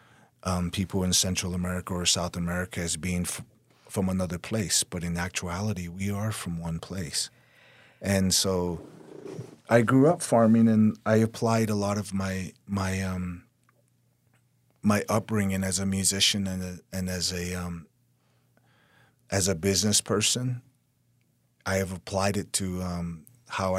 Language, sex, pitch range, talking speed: English, male, 90-110 Hz, 150 wpm